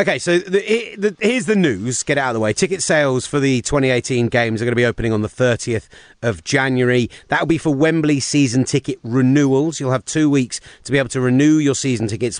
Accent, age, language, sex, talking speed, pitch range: British, 30-49, English, male, 235 wpm, 115-150 Hz